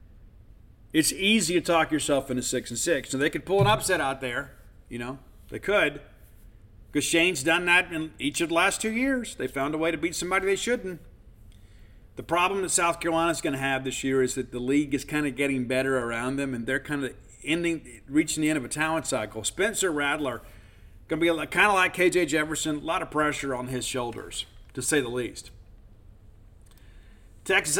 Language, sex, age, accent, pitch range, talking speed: English, male, 40-59, American, 125-170 Hz, 205 wpm